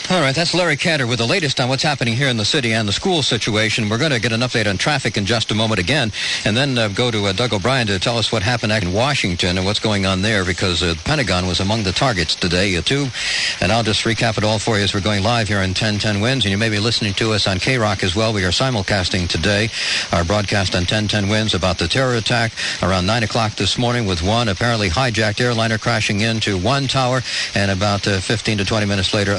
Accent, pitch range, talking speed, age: American, 95-115 Hz, 255 wpm, 60-79